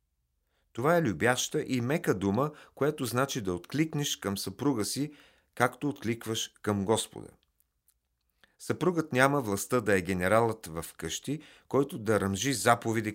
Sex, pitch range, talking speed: male, 100-135 Hz, 130 wpm